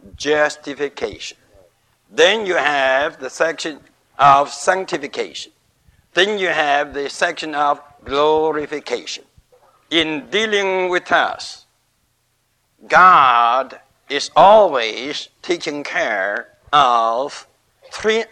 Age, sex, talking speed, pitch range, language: 60-79, male, 85 wpm, 135-190 Hz, English